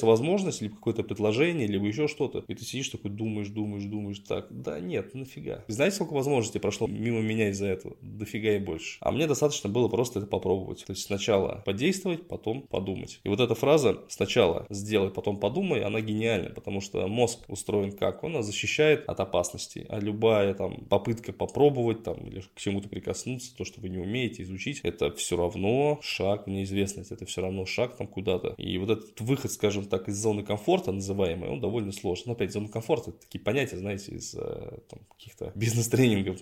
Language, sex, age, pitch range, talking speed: Russian, male, 20-39, 100-125 Hz, 190 wpm